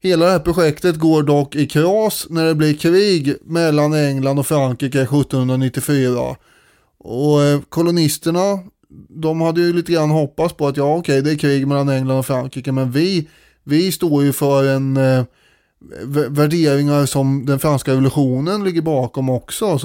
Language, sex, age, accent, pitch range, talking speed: Swedish, male, 20-39, native, 135-165 Hz, 165 wpm